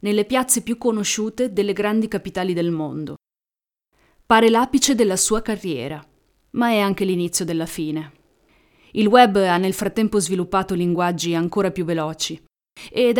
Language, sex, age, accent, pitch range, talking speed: Italian, female, 30-49, native, 175-220 Hz, 140 wpm